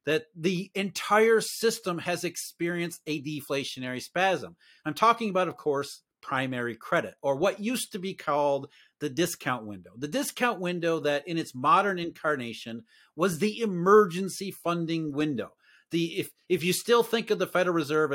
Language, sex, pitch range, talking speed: English, male, 150-205 Hz, 160 wpm